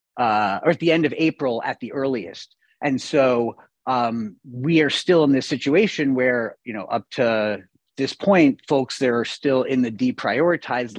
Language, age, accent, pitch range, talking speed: English, 30-49, American, 115-140 Hz, 180 wpm